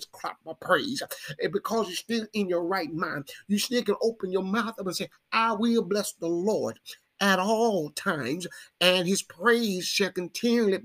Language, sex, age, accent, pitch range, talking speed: English, male, 50-69, American, 180-230 Hz, 185 wpm